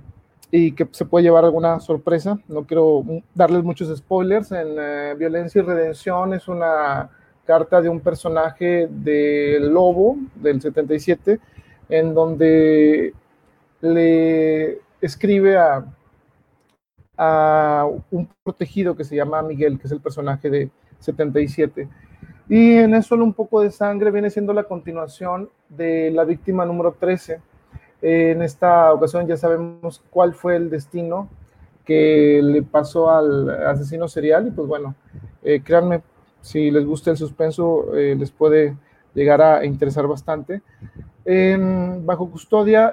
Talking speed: 135 wpm